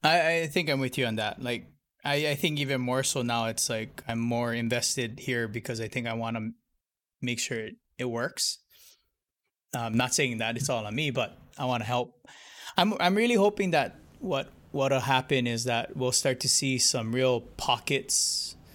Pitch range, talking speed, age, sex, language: 115-135 Hz, 200 wpm, 20-39, male, English